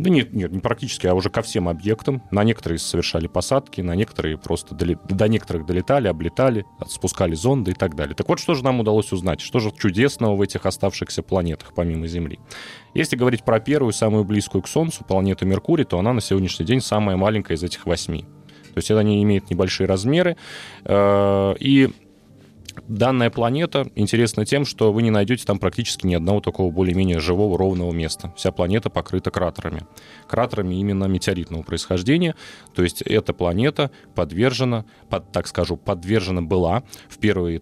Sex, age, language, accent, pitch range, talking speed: male, 20-39, Russian, native, 90-115 Hz, 170 wpm